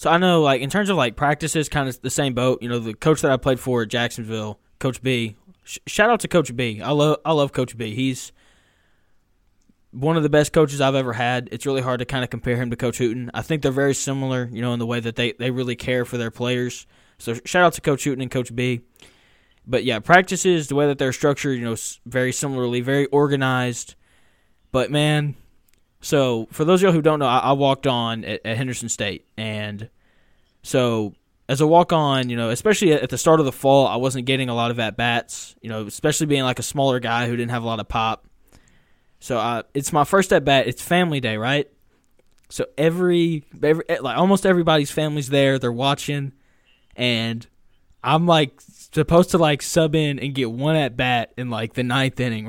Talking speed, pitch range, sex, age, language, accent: 215 wpm, 115-145 Hz, male, 20-39, English, American